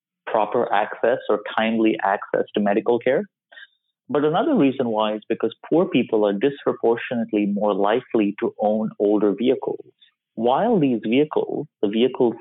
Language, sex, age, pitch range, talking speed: English, male, 30-49, 105-150 Hz, 140 wpm